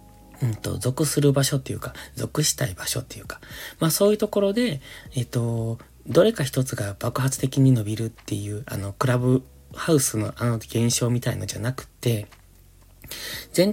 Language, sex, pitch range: Japanese, male, 110-145 Hz